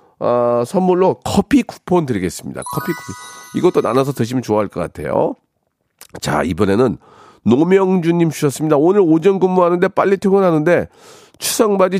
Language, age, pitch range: Korean, 40-59, 115-175 Hz